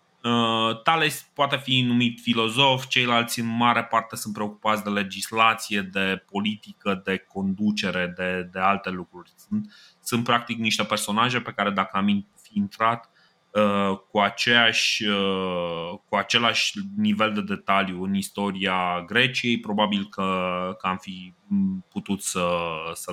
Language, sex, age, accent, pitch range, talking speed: Romanian, male, 30-49, native, 100-130 Hz, 135 wpm